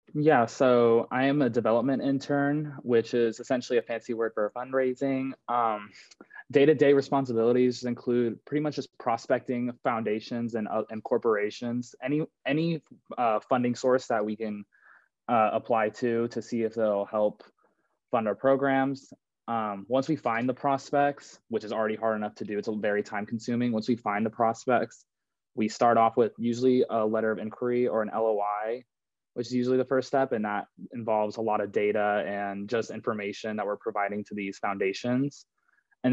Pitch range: 110-130 Hz